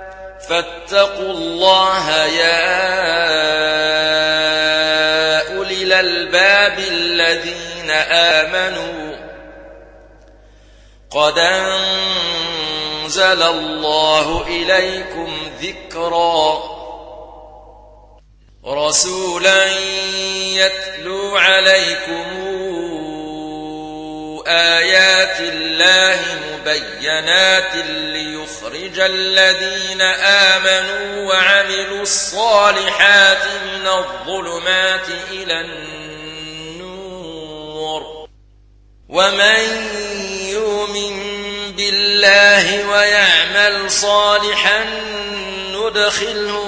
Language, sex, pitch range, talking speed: Arabic, male, 155-200 Hz, 40 wpm